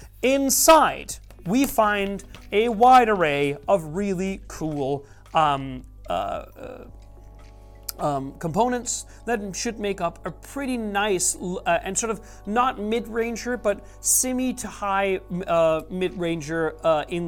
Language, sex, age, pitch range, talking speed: English, male, 30-49, 160-215 Hz, 120 wpm